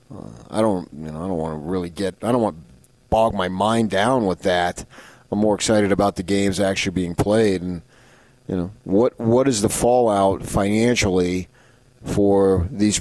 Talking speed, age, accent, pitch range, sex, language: 180 wpm, 30-49, American, 95-115 Hz, male, English